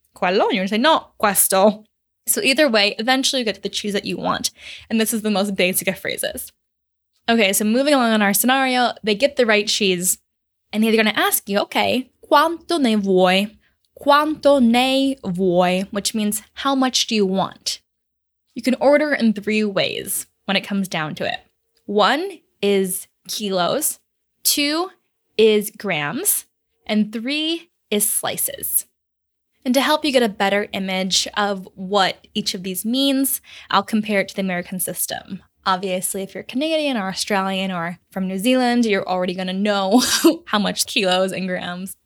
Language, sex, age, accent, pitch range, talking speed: Italian, female, 10-29, American, 195-260 Hz, 165 wpm